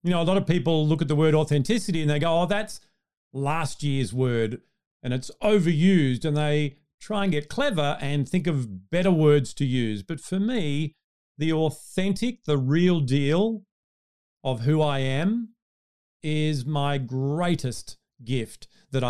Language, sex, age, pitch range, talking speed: English, male, 40-59, 140-190 Hz, 165 wpm